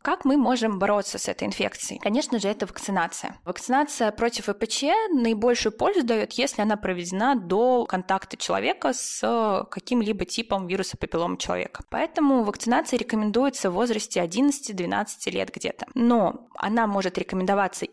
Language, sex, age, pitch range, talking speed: Russian, female, 20-39, 185-240 Hz, 135 wpm